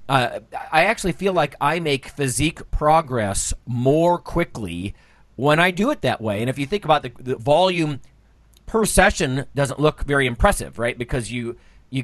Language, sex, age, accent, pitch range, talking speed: English, male, 40-59, American, 115-145 Hz, 175 wpm